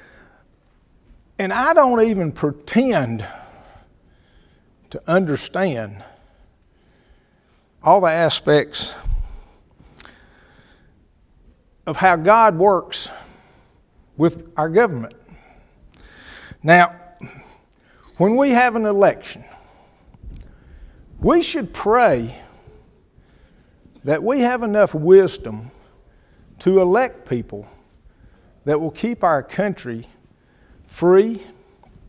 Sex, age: male, 50-69